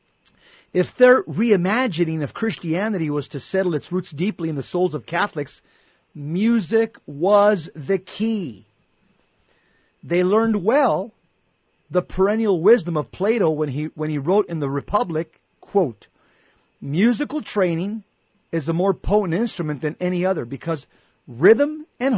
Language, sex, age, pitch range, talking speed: English, male, 50-69, 155-205 Hz, 135 wpm